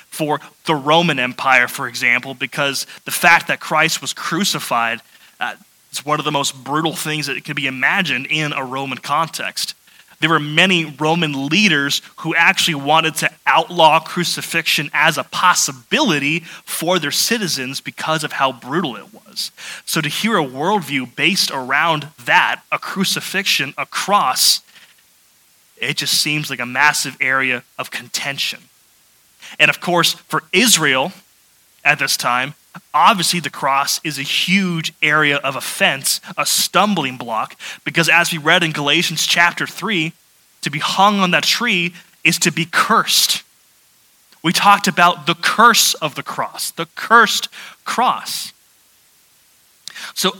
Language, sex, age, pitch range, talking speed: English, male, 20-39, 140-175 Hz, 145 wpm